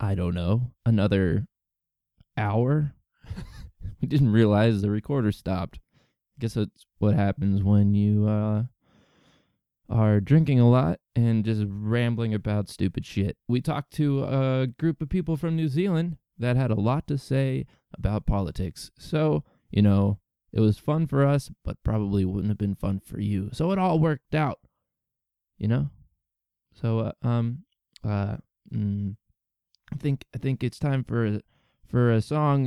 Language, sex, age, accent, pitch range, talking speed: English, male, 20-39, American, 105-140 Hz, 155 wpm